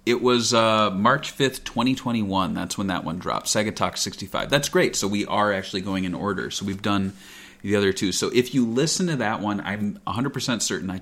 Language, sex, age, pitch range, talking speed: English, male, 30-49, 95-125 Hz, 220 wpm